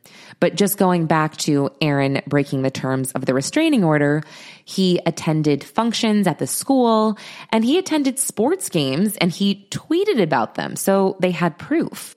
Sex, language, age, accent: female, English, 20-39, American